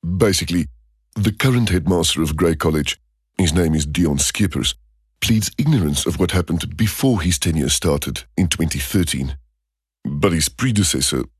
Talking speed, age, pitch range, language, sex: 135 wpm, 40-59, 70-90 Hz, English, male